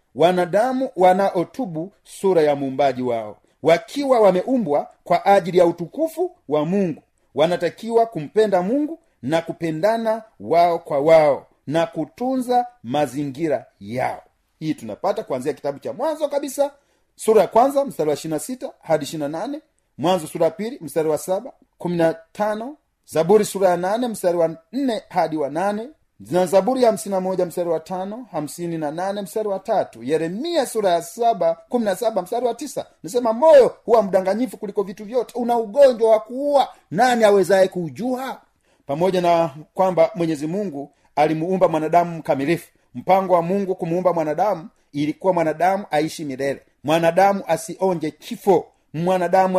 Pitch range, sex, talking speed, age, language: 165-225 Hz, male, 135 wpm, 40-59, Swahili